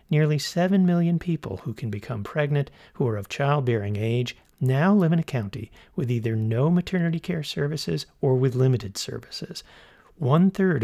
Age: 50-69